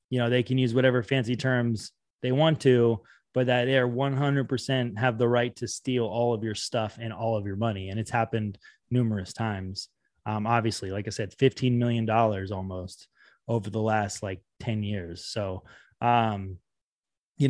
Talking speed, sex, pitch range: 190 wpm, male, 115-130 Hz